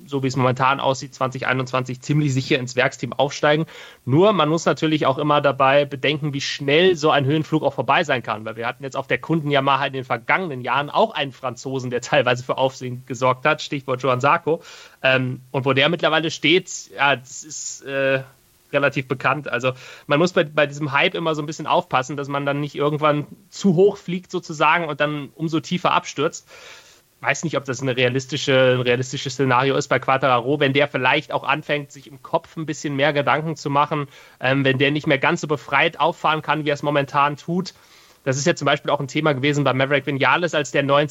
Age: 30-49